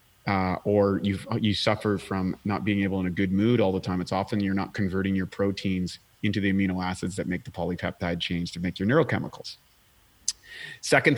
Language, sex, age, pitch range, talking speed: English, male, 40-59, 100-125 Hz, 195 wpm